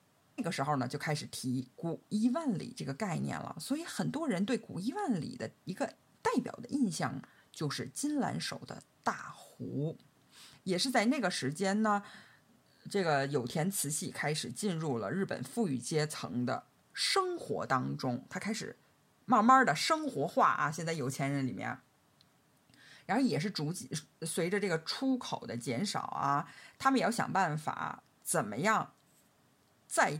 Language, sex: Chinese, female